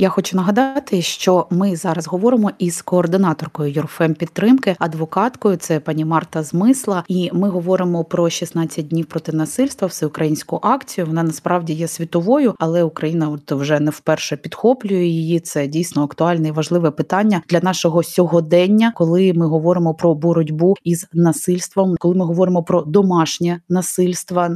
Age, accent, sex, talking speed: 20-39, native, female, 145 wpm